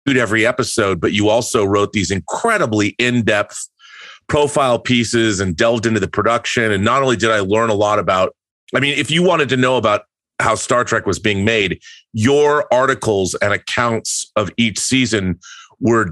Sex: male